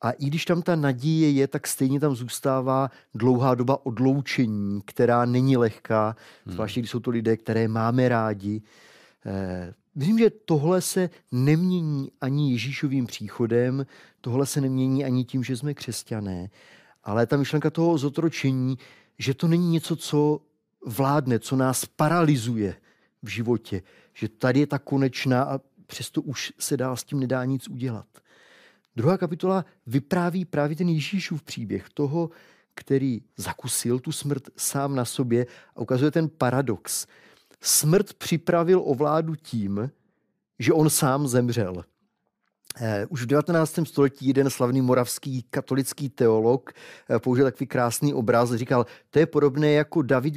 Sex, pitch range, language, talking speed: male, 120-150 Hz, Czech, 145 wpm